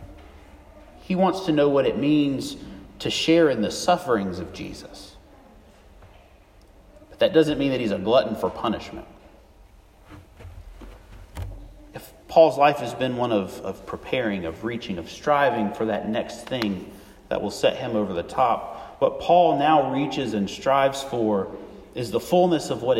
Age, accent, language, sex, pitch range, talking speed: 40-59, American, English, male, 95-145 Hz, 155 wpm